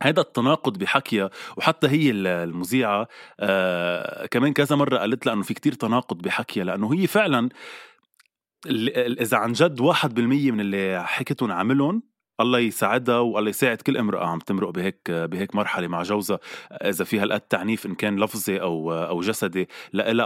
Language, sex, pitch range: Arabic, male, 100-145 Hz